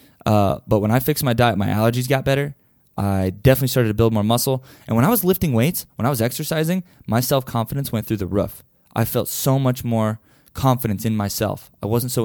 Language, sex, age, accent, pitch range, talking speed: English, male, 20-39, American, 110-140 Hz, 220 wpm